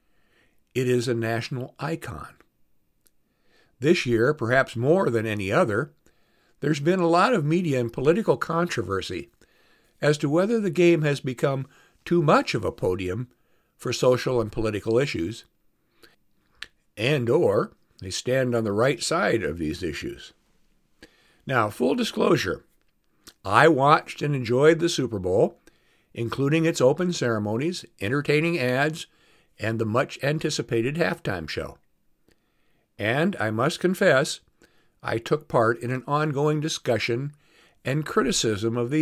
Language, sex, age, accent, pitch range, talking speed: English, male, 60-79, American, 115-160 Hz, 130 wpm